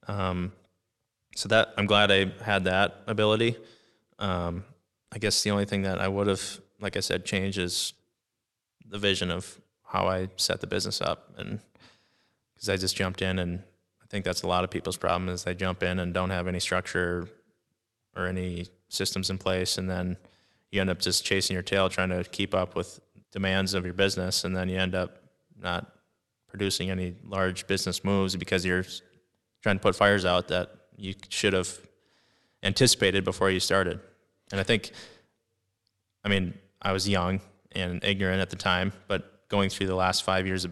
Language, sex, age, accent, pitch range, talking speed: English, male, 20-39, American, 90-100 Hz, 185 wpm